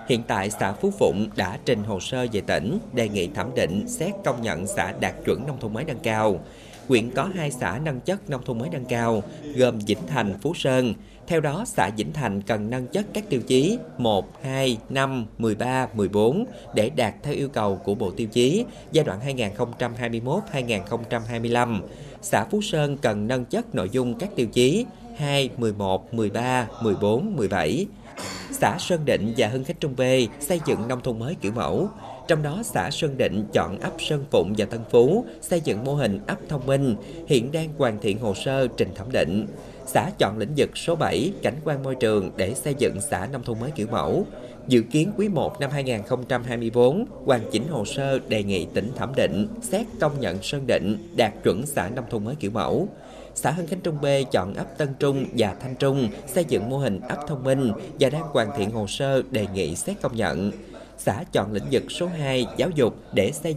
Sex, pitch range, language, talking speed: male, 110-140 Hz, Vietnamese, 205 wpm